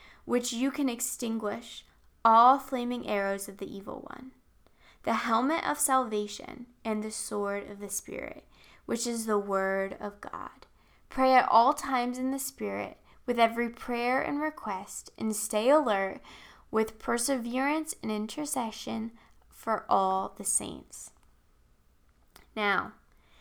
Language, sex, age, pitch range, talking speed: English, female, 10-29, 195-255 Hz, 130 wpm